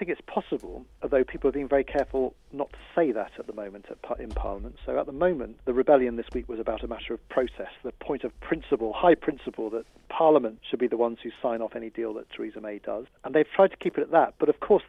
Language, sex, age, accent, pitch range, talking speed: English, male, 40-59, British, 110-140 Hz, 265 wpm